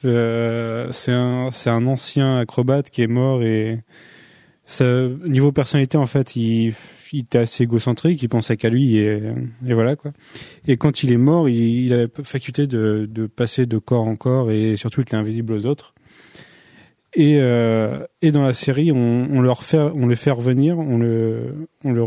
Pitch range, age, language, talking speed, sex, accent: 115-140 Hz, 20-39, French, 195 wpm, male, French